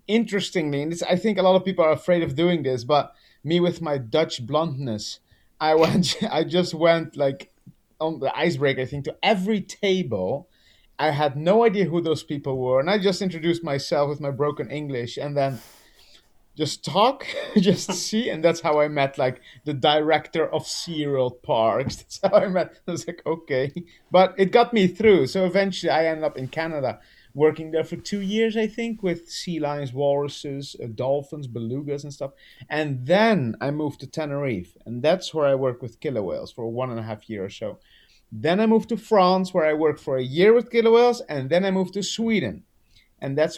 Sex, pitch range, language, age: male, 140-180 Hz, English, 30-49